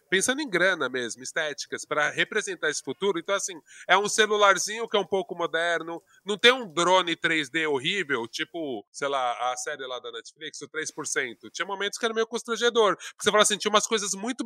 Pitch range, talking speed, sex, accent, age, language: 155-230 Hz, 205 wpm, male, Brazilian, 20-39, English